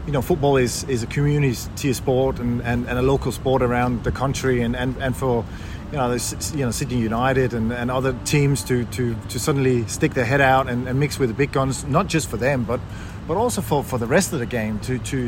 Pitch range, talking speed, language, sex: 115-140 Hz, 245 wpm, English, male